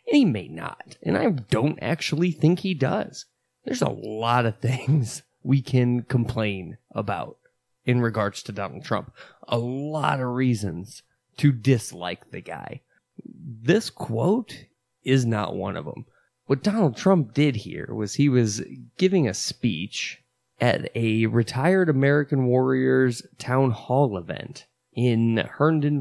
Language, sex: English, male